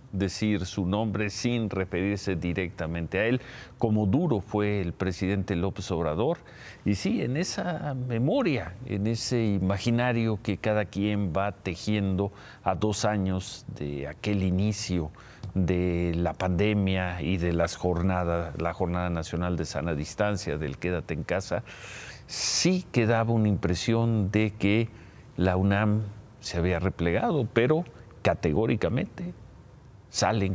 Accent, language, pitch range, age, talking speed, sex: Mexican, Spanish, 90-110 Hz, 50-69, 130 wpm, male